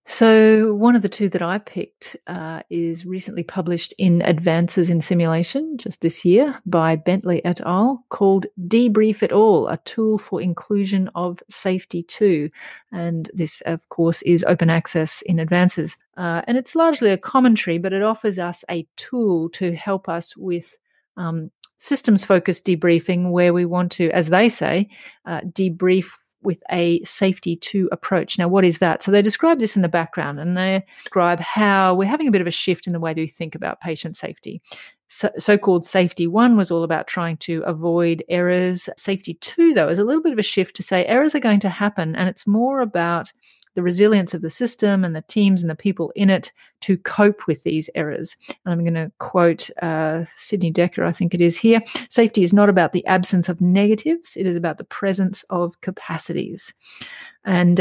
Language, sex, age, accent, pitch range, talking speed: English, female, 30-49, Australian, 170-205 Hz, 190 wpm